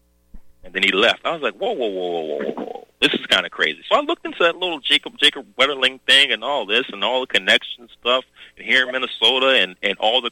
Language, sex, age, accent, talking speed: English, male, 30-49, American, 255 wpm